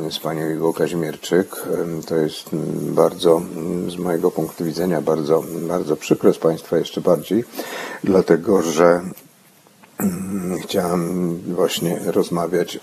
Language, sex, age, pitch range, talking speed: Polish, male, 50-69, 80-100 Hz, 105 wpm